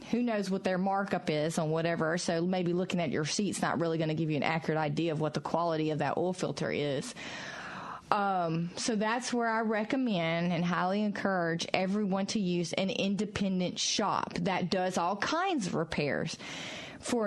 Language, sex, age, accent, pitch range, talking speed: English, female, 30-49, American, 175-210 Hz, 190 wpm